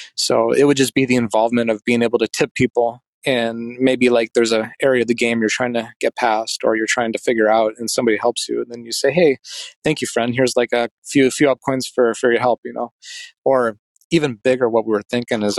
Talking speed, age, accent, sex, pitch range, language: 255 wpm, 30-49, American, male, 115-125 Hz, English